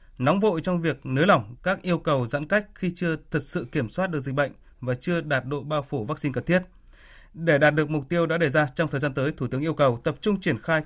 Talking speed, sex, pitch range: 270 wpm, male, 135-180 Hz